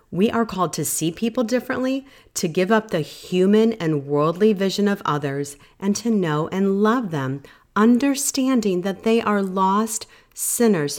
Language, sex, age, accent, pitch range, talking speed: English, female, 40-59, American, 150-210 Hz, 160 wpm